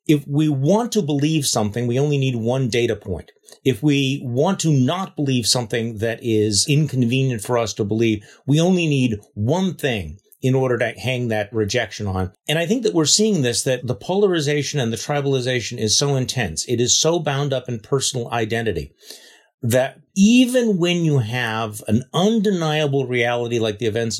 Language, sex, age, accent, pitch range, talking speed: English, male, 40-59, American, 110-140 Hz, 180 wpm